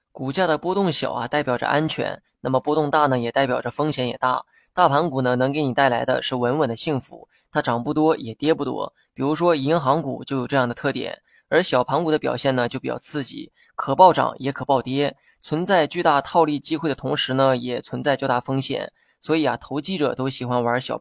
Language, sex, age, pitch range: Chinese, male, 20-39, 130-155 Hz